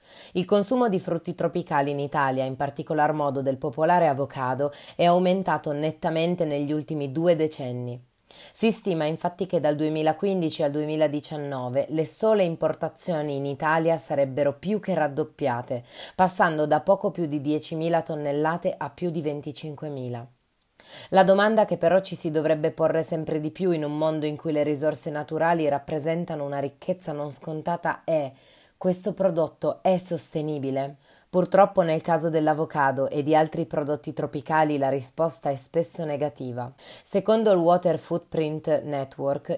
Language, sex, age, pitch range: Italian, female, 20-39, 150-175 Hz